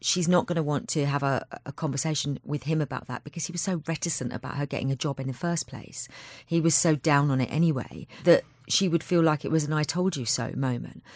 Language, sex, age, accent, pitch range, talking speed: English, female, 40-59, British, 135-180 Hz, 260 wpm